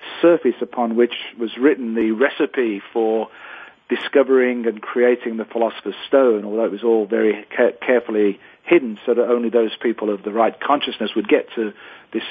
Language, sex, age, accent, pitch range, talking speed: English, male, 40-59, British, 110-130 Hz, 165 wpm